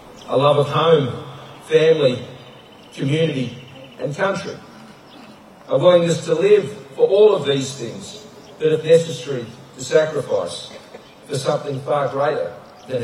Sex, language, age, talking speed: male, English, 50-69, 125 wpm